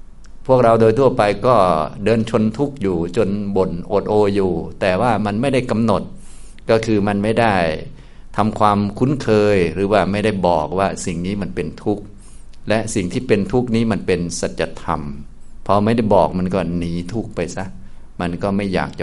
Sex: male